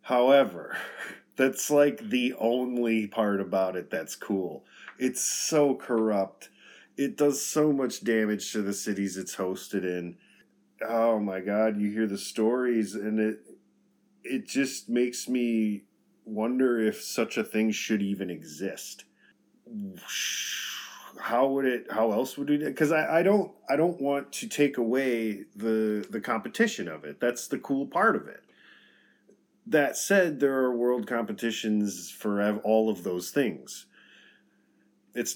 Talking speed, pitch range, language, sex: 145 wpm, 105-135 Hz, English, male